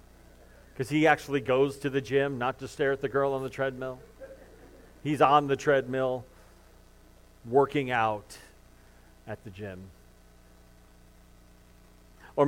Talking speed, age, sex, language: 125 wpm, 40-59, male, English